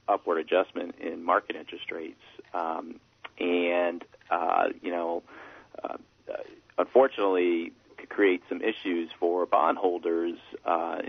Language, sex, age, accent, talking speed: English, male, 40-59, American, 110 wpm